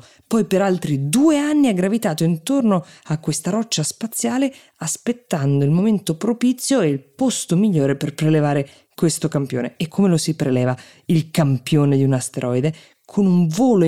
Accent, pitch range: native, 140-195 Hz